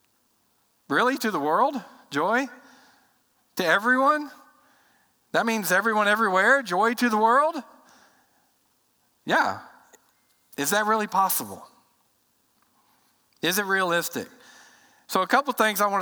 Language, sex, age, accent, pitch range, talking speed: English, male, 50-69, American, 170-225 Hz, 110 wpm